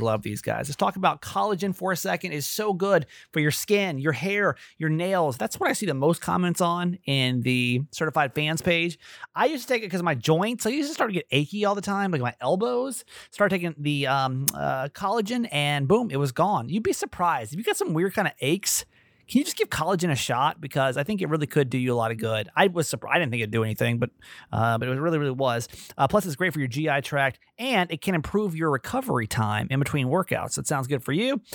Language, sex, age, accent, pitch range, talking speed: English, male, 30-49, American, 130-190 Hz, 255 wpm